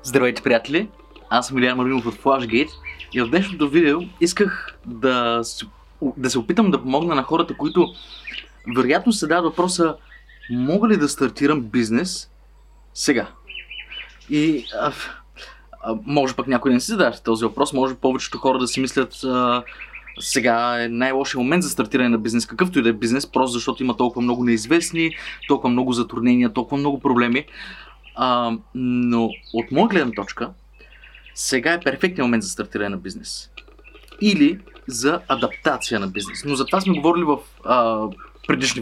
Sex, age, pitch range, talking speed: male, 20-39, 120-165 Hz, 160 wpm